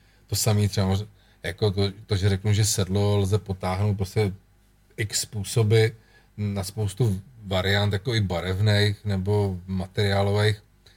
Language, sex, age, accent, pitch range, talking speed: Czech, male, 40-59, native, 100-120 Hz, 125 wpm